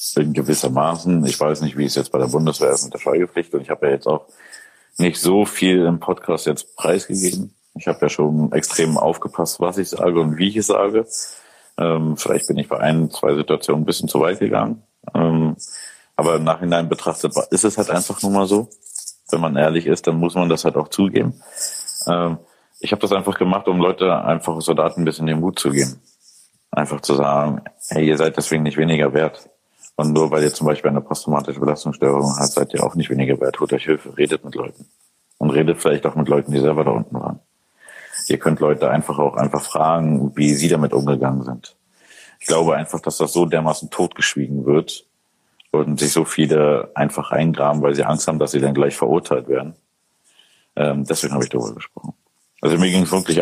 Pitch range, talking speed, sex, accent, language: 70-85 Hz, 210 wpm, male, German, German